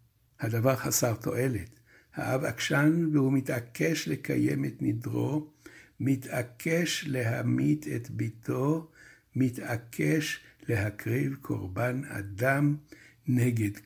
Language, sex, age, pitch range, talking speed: Hebrew, male, 60-79, 110-145 Hz, 80 wpm